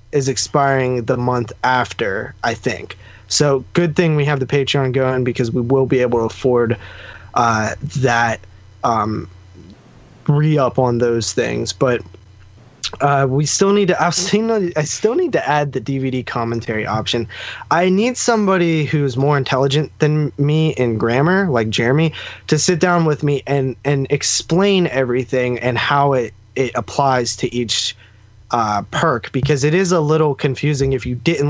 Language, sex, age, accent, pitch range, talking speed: English, male, 20-39, American, 115-150 Hz, 160 wpm